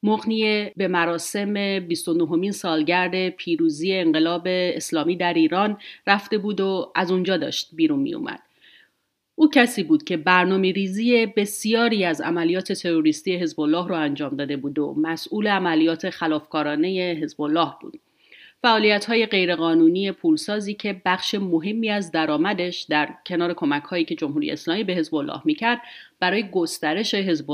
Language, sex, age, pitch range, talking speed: Persian, female, 40-59, 165-230 Hz, 135 wpm